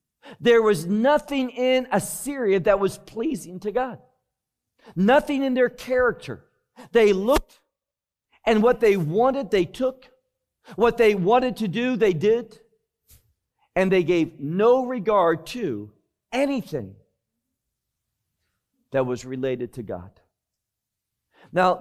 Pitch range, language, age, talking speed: 155-250 Hz, English, 50-69, 115 wpm